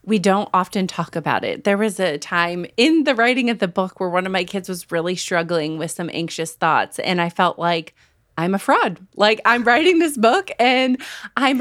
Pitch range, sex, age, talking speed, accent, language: 175-255 Hz, female, 30-49, 215 wpm, American, English